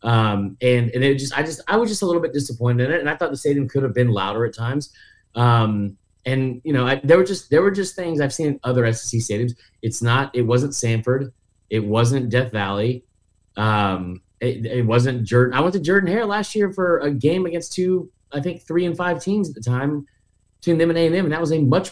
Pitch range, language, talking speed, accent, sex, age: 105-135 Hz, English, 240 wpm, American, male, 30-49